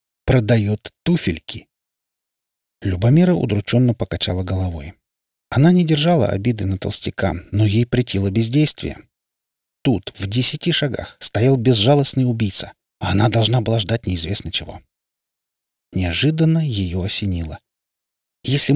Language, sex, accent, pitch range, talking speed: Russian, male, native, 95-130 Hz, 105 wpm